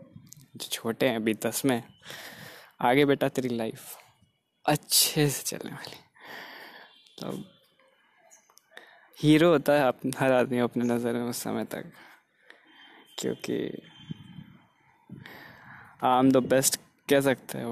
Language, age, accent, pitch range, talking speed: Hindi, 20-39, native, 130-160 Hz, 115 wpm